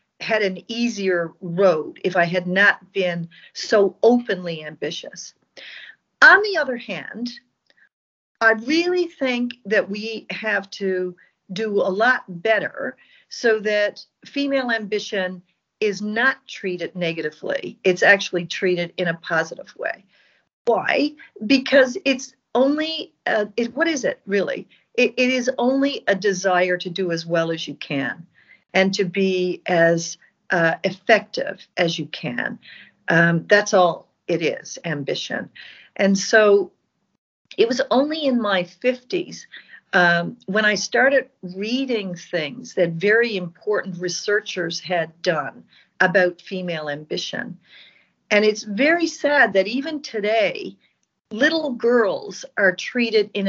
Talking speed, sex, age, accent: 130 wpm, female, 50-69, American